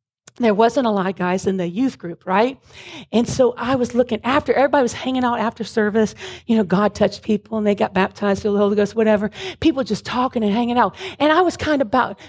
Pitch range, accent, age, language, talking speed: 200-280 Hz, American, 40-59, English, 240 wpm